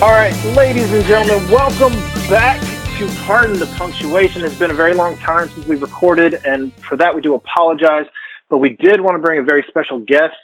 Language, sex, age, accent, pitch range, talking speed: English, male, 30-49, American, 140-175 Hz, 205 wpm